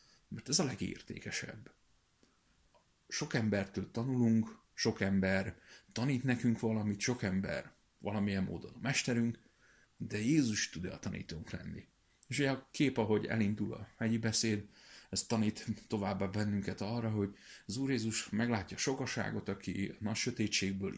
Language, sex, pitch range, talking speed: Hungarian, male, 105-120 Hz, 135 wpm